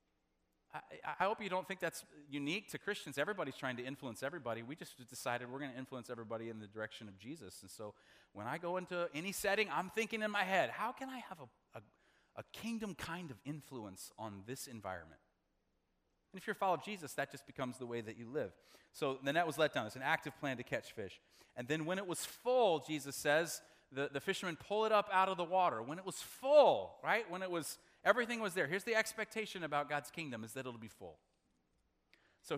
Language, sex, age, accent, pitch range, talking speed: English, male, 30-49, American, 125-185 Hz, 225 wpm